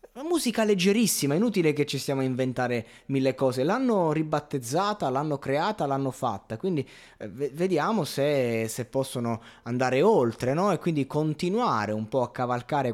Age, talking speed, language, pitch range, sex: 20-39, 160 wpm, Italian, 115-150 Hz, male